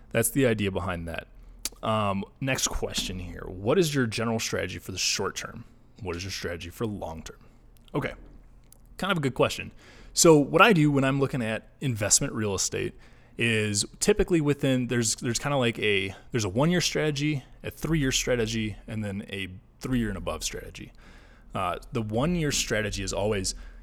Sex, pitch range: male, 100-130 Hz